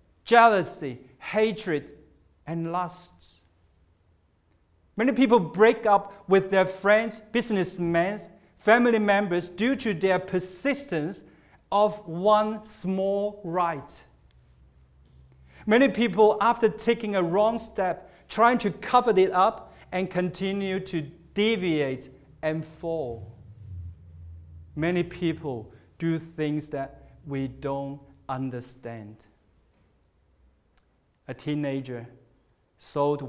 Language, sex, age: English, male, 50-69